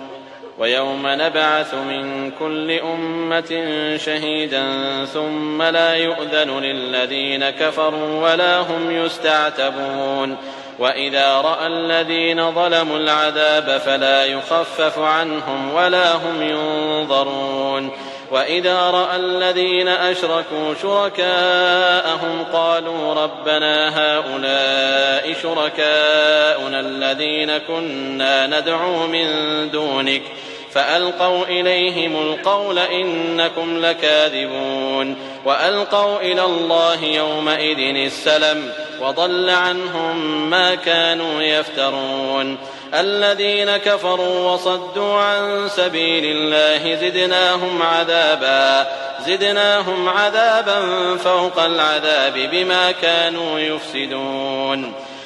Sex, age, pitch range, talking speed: male, 30-49, 135-175 Hz, 75 wpm